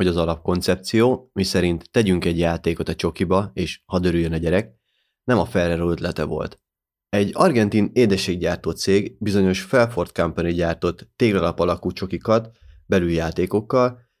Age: 30-49